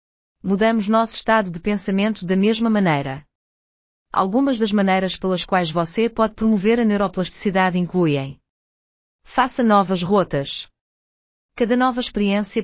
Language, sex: Portuguese, female